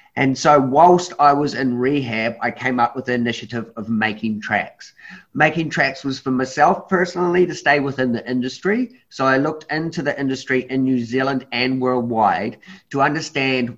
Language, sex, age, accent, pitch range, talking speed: English, male, 30-49, Australian, 120-145 Hz, 175 wpm